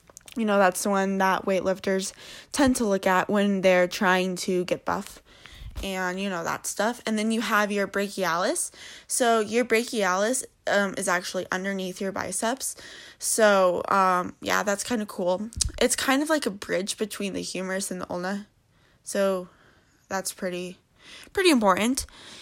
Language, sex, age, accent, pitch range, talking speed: English, female, 20-39, American, 190-220 Hz, 165 wpm